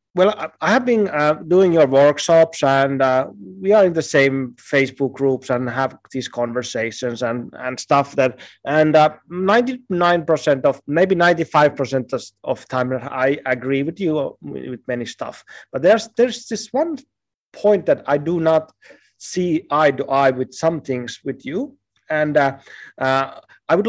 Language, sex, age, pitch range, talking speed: Finnish, male, 30-49, 130-170 Hz, 160 wpm